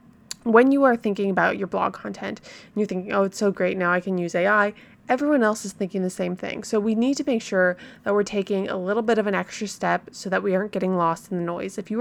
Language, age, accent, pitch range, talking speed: English, 20-39, American, 185-225 Hz, 270 wpm